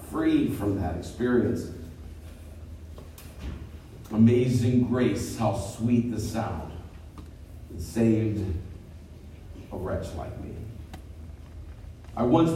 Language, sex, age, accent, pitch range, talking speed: English, male, 50-69, American, 90-140 Hz, 85 wpm